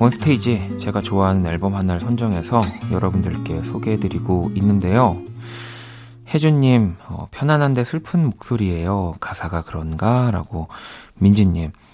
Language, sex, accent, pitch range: Korean, male, native, 90-120 Hz